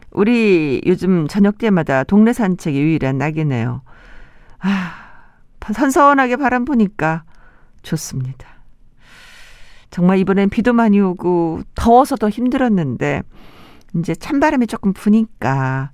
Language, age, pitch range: Korean, 50-69, 155-220 Hz